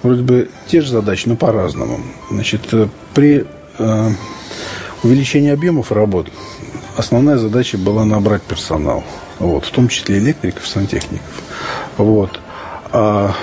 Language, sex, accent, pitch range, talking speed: Russian, male, native, 100-125 Hz, 115 wpm